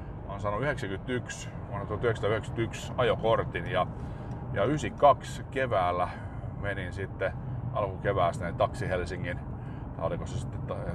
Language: Finnish